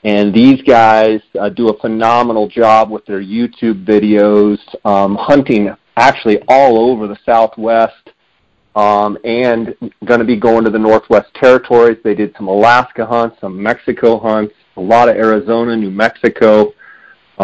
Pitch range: 105-115 Hz